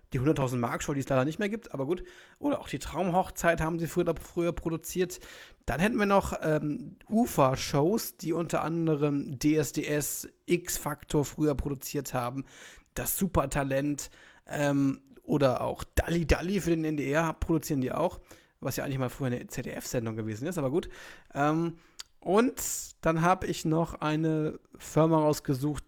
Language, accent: German, German